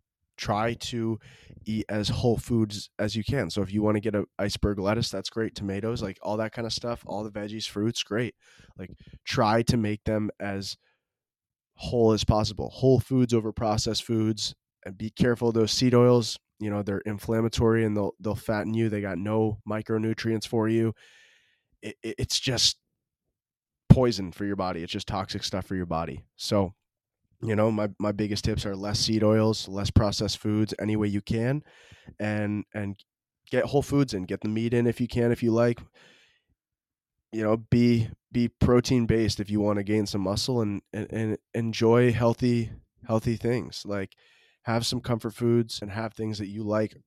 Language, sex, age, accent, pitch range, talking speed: English, male, 20-39, American, 100-115 Hz, 190 wpm